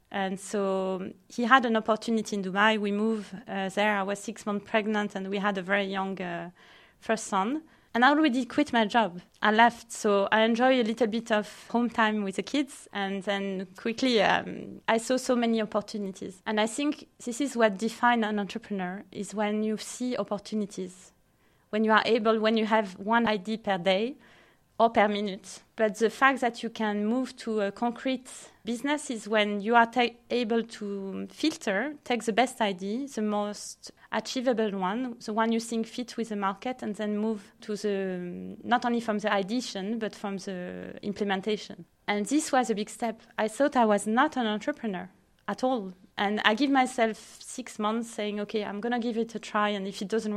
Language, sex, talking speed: English, female, 195 wpm